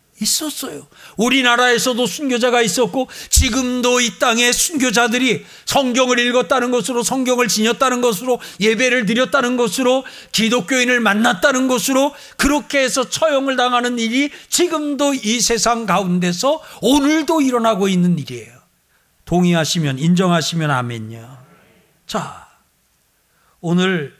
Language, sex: Korean, male